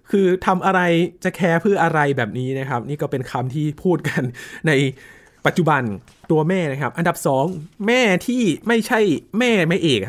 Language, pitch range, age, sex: Thai, 130-175 Hz, 20-39, male